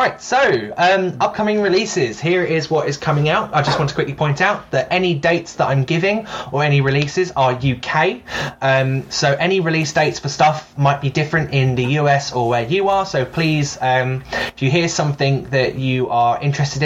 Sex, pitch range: male, 135-170 Hz